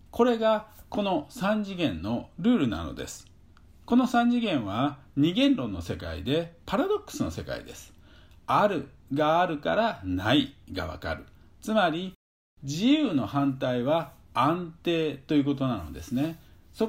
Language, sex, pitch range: Japanese, male, 120-195 Hz